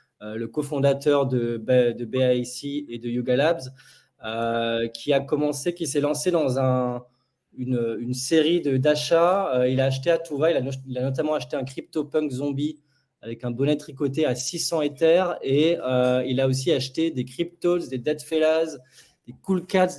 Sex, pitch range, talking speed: male, 125-150 Hz, 185 wpm